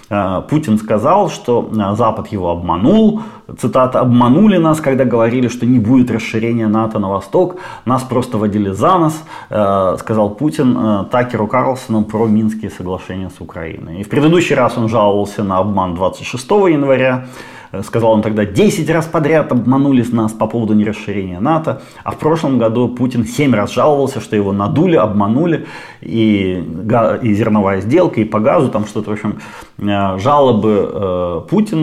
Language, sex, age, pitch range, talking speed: Ukrainian, male, 30-49, 105-130 Hz, 155 wpm